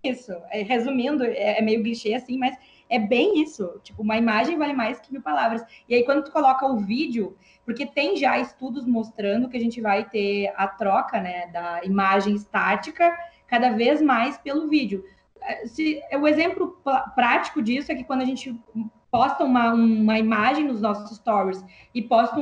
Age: 20-39